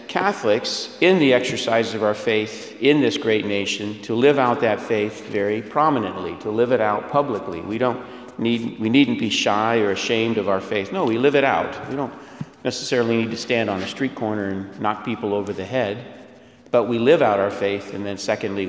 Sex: male